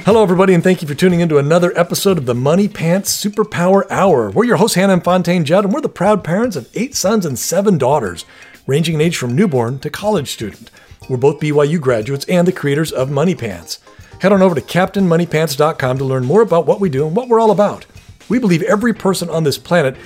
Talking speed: 225 wpm